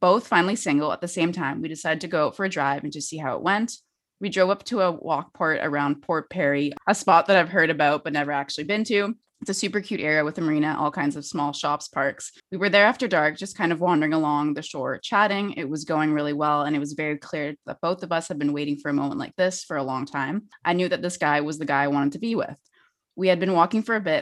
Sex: female